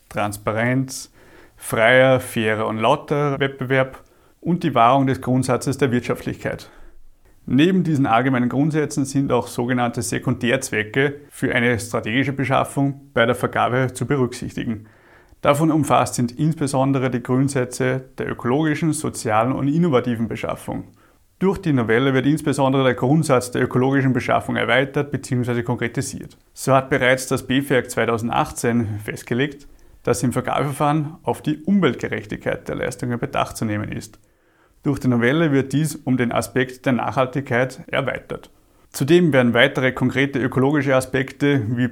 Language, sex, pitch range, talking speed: German, male, 120-140 Hz, 130 wpm